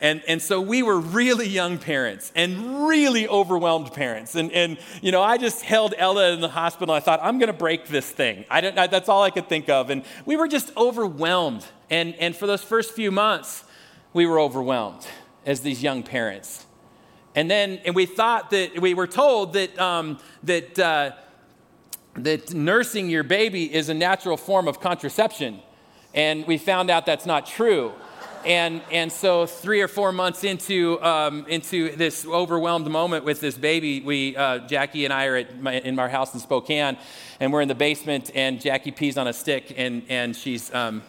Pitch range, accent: 140-185 Hz, American